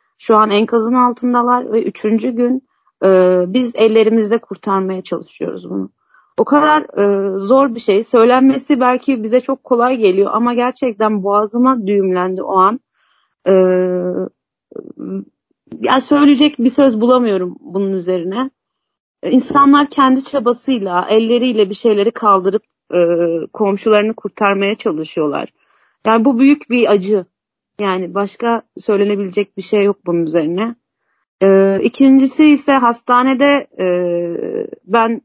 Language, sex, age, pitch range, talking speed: Turkish, female, 30-49, 185-245 Hz, 120 wpm